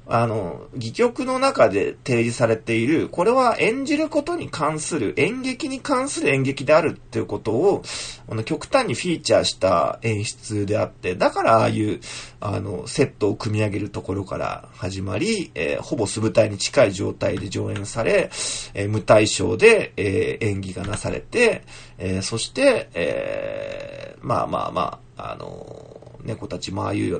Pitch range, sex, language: 105-155 Hz, male, Japanese